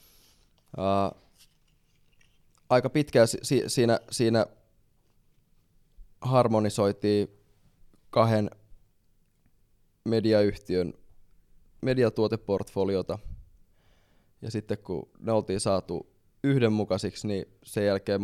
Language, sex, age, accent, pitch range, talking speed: Finnish, male, 20-39, native, 95-110 Hz, 65 wpm